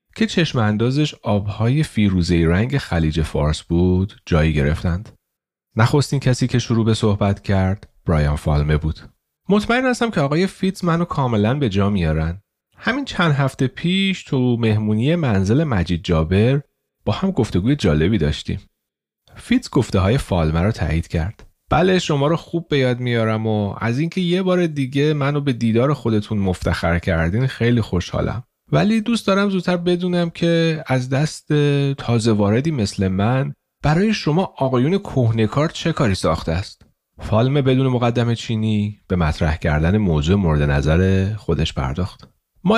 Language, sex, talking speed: Persian, male, 150 wpm